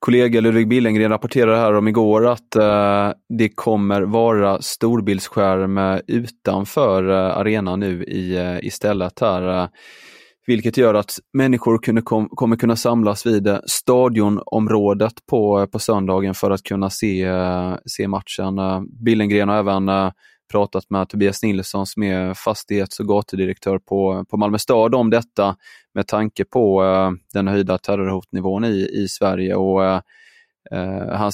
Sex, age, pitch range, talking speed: male, 20-39, 95-115 Hz, 140 wpm